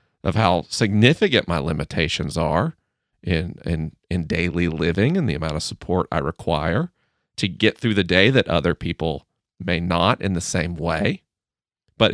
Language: English